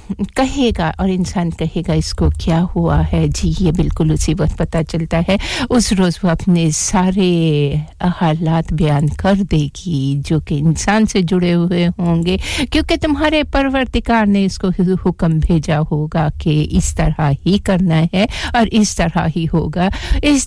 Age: 60-79